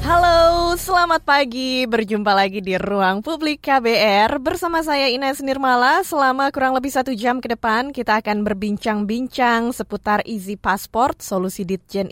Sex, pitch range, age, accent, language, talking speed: female, 185-270 Hz, 20-39, native, Indonesian, 140 wpm